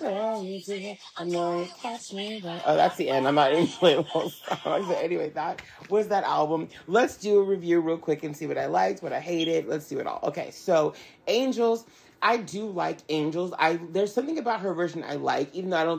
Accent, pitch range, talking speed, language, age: American, 150-185 Hz, 190 wpm, English, 30-49